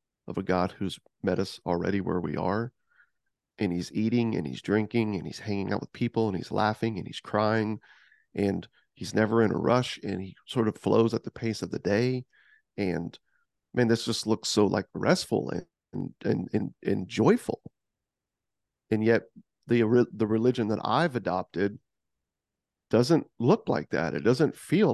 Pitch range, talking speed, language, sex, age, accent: 100-120 Hz, 180 wpm, English, male, 40-59, American